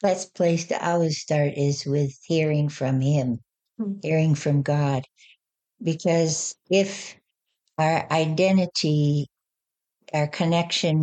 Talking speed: 110 wpm